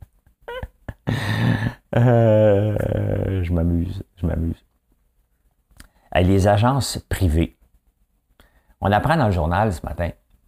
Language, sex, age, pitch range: French, male, 60-79, 75-105 Hz